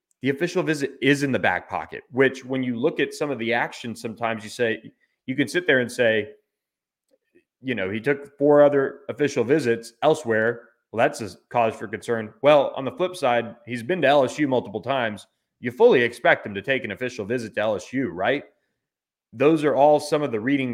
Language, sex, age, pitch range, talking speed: English, male, 30-49, 110-145 Hz, 205 wpm